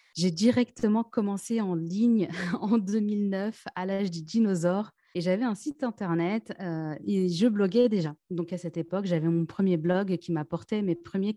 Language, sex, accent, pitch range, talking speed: French, female, French, 180-225 Hz, 175 wpm